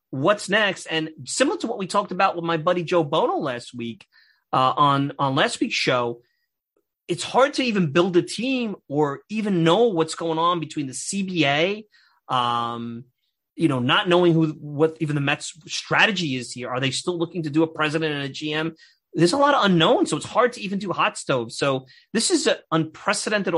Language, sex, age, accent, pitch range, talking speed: English, male, 30-49, American, 140-190 Hz, 205 wpm